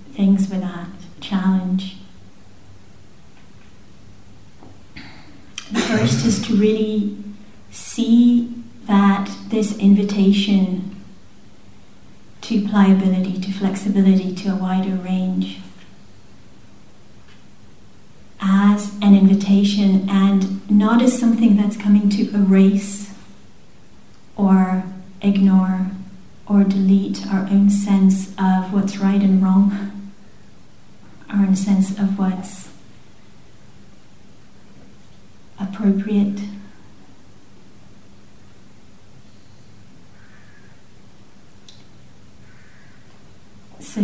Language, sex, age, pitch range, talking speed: English, female, 40-59, 190-200 Hz, 70 wpm